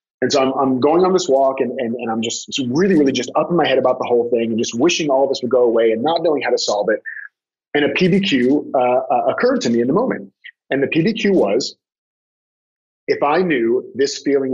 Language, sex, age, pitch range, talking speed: English, male, 30-49, 115-185 Hz, 250 wpm